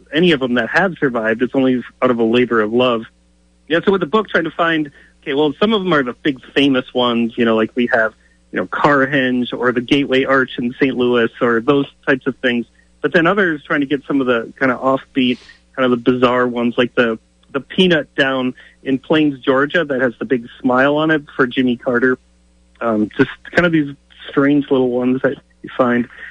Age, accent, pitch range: 30-49, American, 125-150 Hz